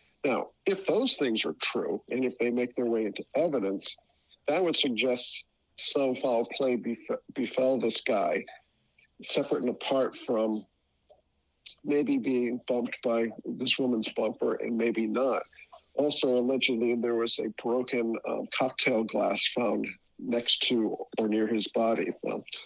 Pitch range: 115-145 Hz